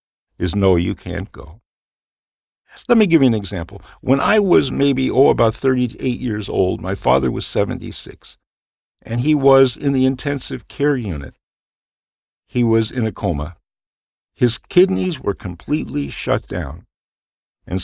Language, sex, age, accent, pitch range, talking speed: English, male, 50-69, American, 95-135 Hz, 150 wpm